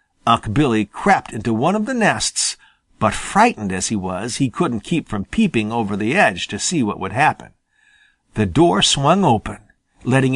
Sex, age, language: male, 50-69, Japanese